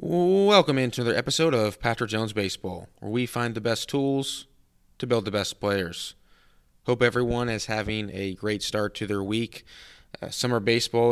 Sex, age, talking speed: male, 20-39, 175 wpm